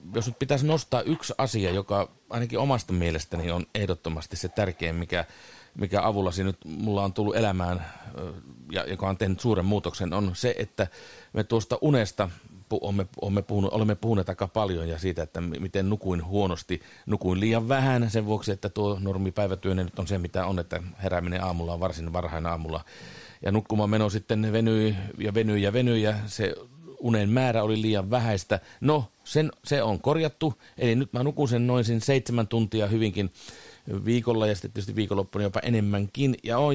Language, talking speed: Finnish, 175 wpm